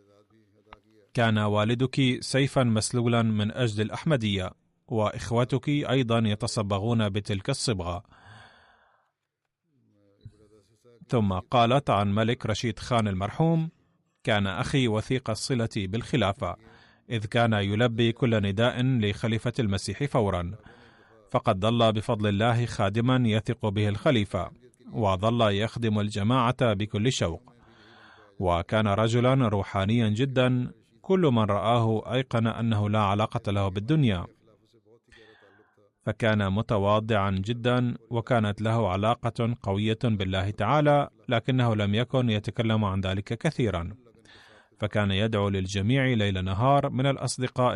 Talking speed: 100 wpm